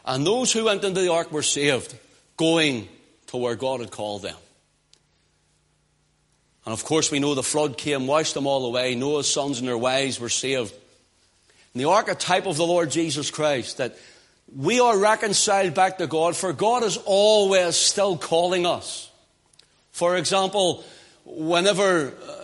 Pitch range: 155-200 Hz